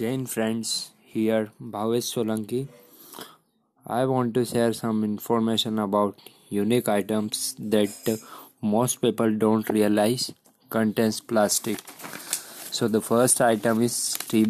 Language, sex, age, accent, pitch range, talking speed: Hindi, male, 20-39, native, 110-130 Hz, 110 wpm